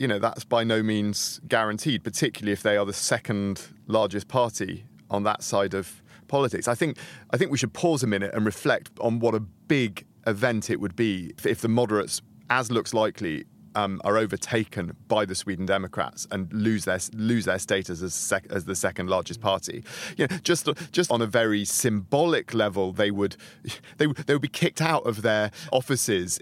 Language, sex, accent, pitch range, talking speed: English, male, British, 100-120 Hz, 200 wpm